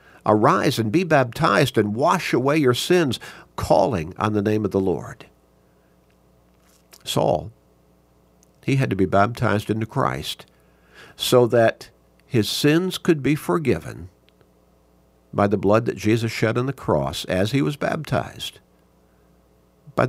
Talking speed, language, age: 135 wpm, English, 50-69